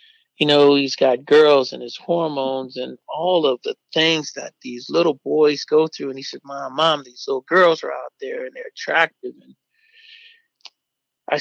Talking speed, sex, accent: 185 wpm, male, American